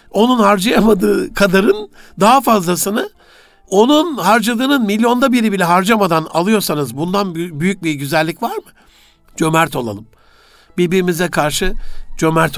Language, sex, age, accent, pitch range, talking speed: Turkish, male, 60-79, native, 140-210 Hz, 110 wpm